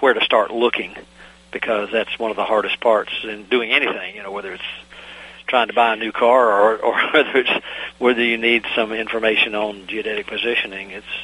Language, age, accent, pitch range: English, 50-69, American, 100-120 Hz